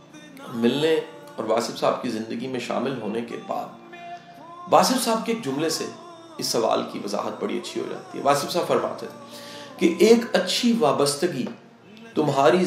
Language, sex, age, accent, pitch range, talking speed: English, male, 40-59, Indian, 135-230 Hz, 160 wpm